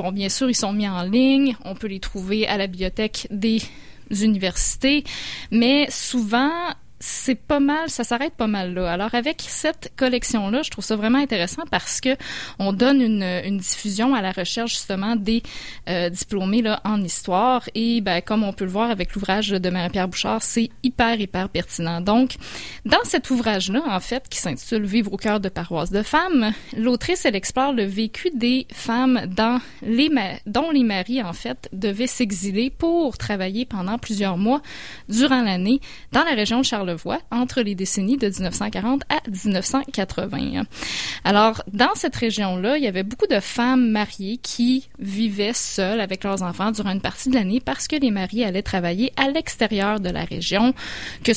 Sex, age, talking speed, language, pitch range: female, 20-39, 180 wpm, French, 195-255 Hz